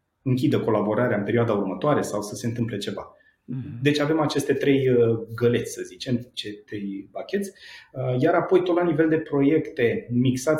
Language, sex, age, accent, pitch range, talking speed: Romanian, male, 30-49, native, 120-145 Hz, 160 wpm